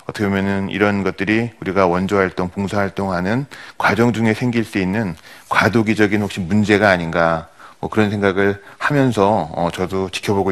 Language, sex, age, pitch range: Korean, male, 40-59, 95-120 Hz